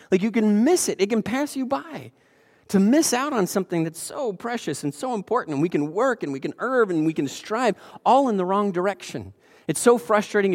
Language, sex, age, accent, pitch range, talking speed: English, male, 30-49, American, 160-215 Hz, 235 wpm